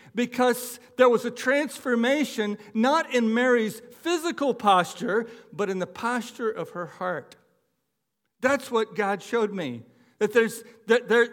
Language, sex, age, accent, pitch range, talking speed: English, male, 60-79, American, 165-230 Hz, 140 wpm